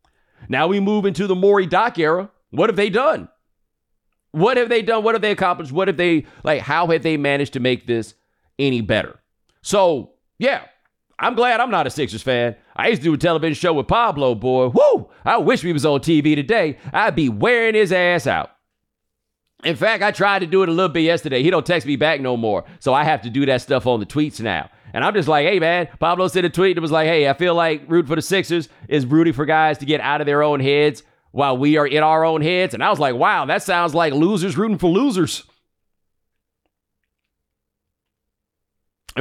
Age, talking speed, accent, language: 40-59, 225 wpm, American, English